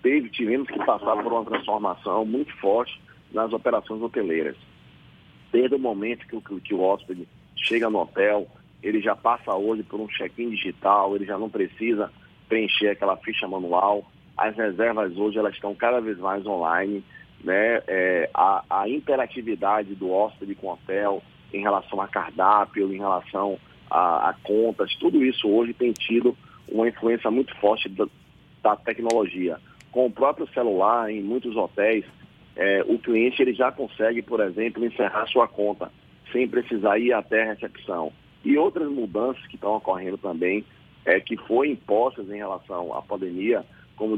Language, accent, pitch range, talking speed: Portuguese, Brazilian, 100-120 Hz, 150 wpm